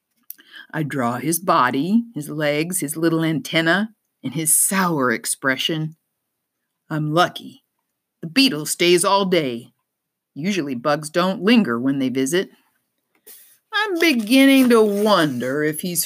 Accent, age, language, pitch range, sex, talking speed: American, 50-69, English, 145-225 Hz, female, 125 wpm